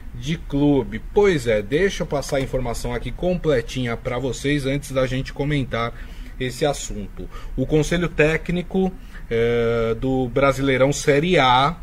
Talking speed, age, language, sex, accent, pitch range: 130 wpm, 20-39, Portuguese, male, Brazilian, 130-165 Hz